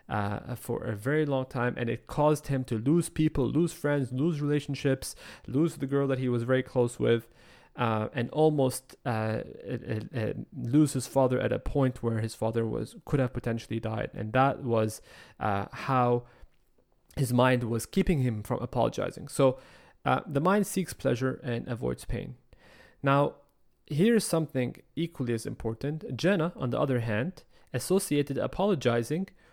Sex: male